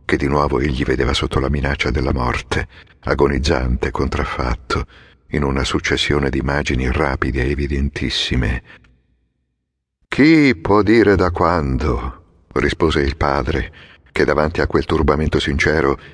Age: 50-69